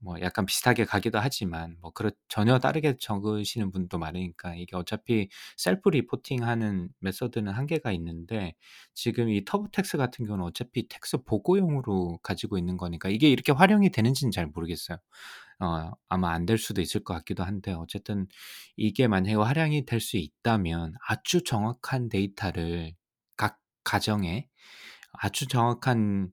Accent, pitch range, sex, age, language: native, 95-125 Hz, male, 20-39, Korean